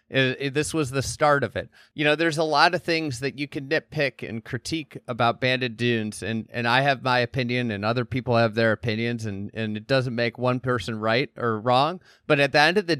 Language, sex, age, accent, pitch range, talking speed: English, male, 30-49, American, 110-140 Hz, 230 wpm